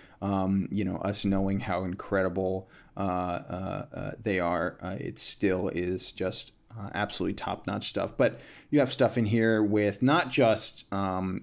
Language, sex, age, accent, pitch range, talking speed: English, male, 30-49, American, 95-115 Hz, 155 wpm